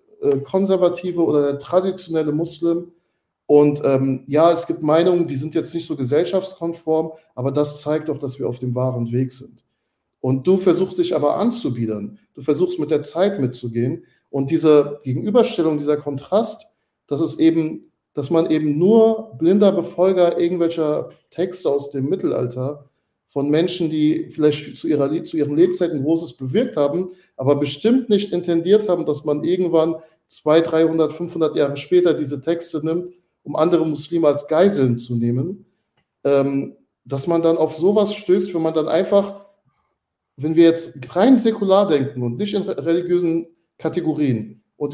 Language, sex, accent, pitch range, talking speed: German, male, German, 145-180 Hz, 155 wpm